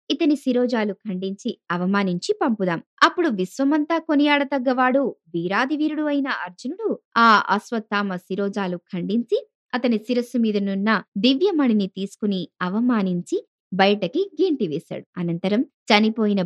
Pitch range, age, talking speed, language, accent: 185-255 Hz, 20-39, 95 wpm, Telugu, native